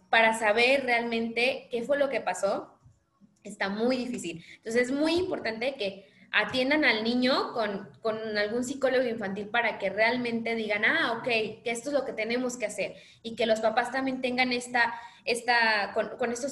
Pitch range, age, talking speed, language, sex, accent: 210-250 Hz, 20-39, 180 wpm, Spanish, female, Mexican